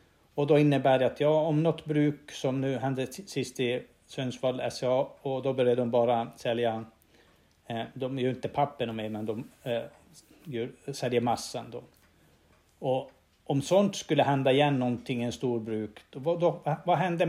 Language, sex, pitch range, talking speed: Swedish, male, 120-155 Hz, 165 wpm